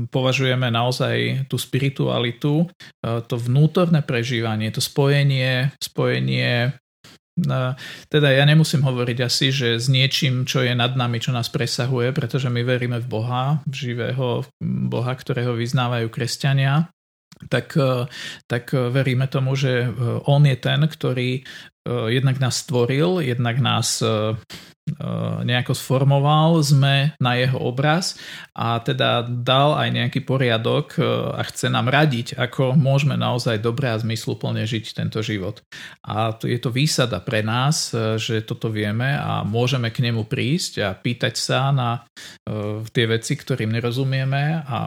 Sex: male